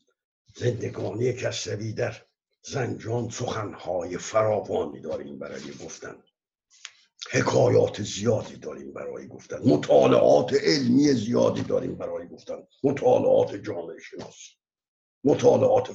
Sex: male